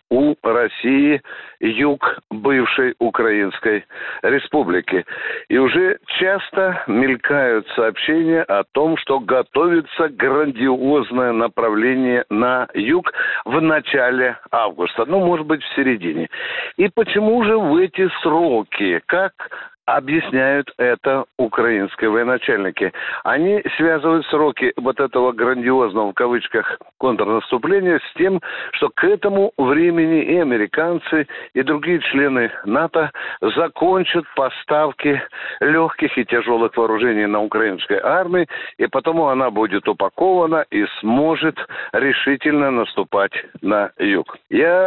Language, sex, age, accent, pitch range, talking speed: Russian, male, 60-79, native, 130-195 Hz, 105 wpm